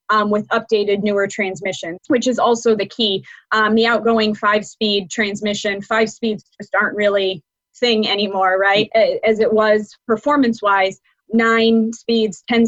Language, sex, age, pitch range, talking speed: English, female, 20-39, 195-225 Hz, 140 wpm